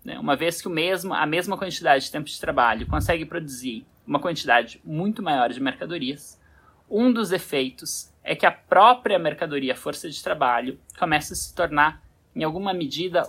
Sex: male